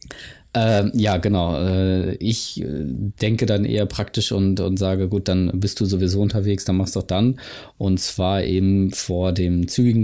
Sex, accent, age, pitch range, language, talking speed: male, German, 20-39, 90-100 Hz, German, 165 wpm